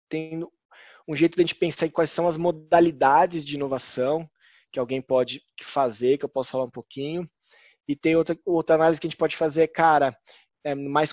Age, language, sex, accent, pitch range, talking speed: 20-39, Portuguese, male, Brazilian, 140-170 Hz, 195 wpm